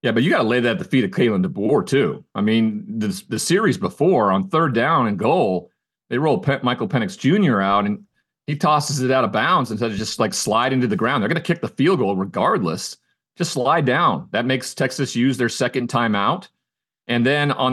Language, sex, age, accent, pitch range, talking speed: English, male, 40-59, American, 120-150 Hz, 230 wpm